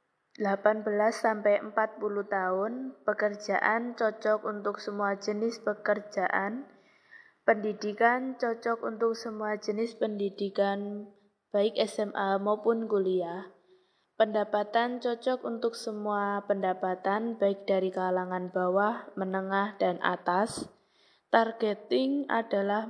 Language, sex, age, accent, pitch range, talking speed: Indonesian, female, 20-39, native, 200-225 Hz, 85 wpm